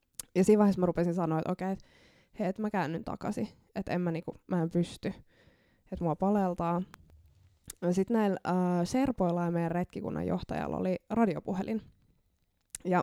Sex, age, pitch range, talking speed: female, 20-39, 160-195 Hz, 165 wpm